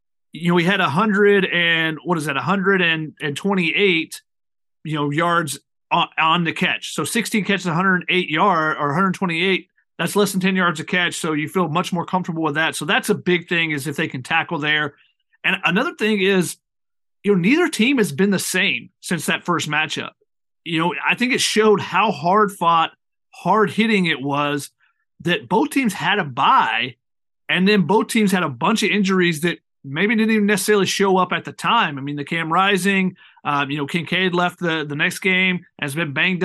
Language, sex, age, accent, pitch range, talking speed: English, male, 30-49, American, 160-195 Hz, 205 wpm